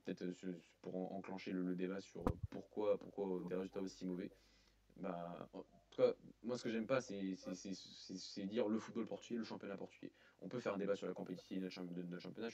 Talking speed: 210 wpm